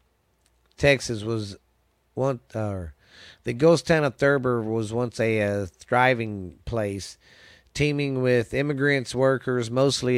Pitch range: 105-125 Hz